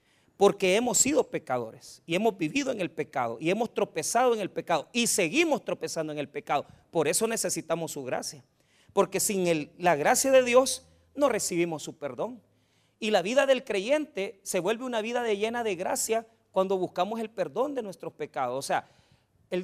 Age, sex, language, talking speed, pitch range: 40-59, male, Spanish, 180 wpm, 150-210 Hz